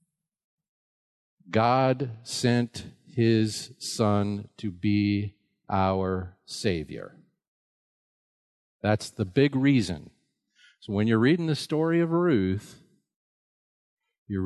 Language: English